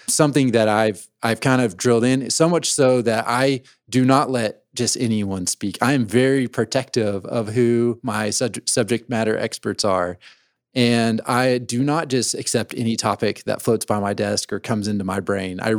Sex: male